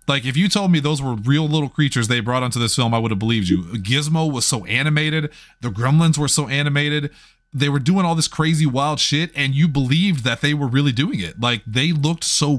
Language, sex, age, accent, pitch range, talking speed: English, male, 30-49, American, 115-150 Hz, 240 wpm